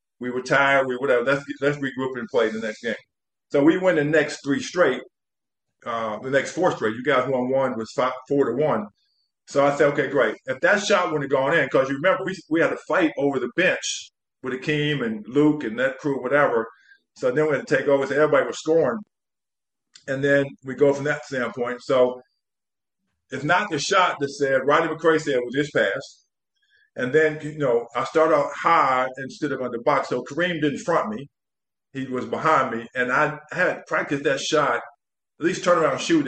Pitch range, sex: 130-160 Hz, male